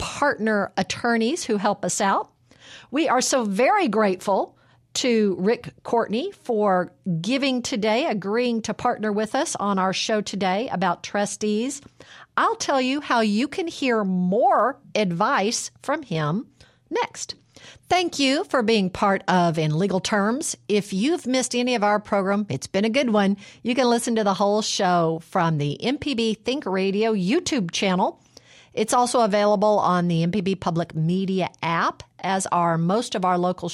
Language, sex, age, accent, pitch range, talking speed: English, female, 50-69, American, 190-245 Hz, 160 wpm